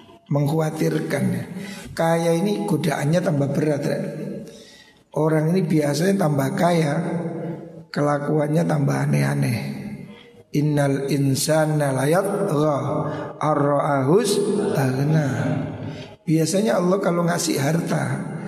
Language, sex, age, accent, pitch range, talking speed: Indonesian, male, 60-79, native, 150-190 Hz, 70 wpm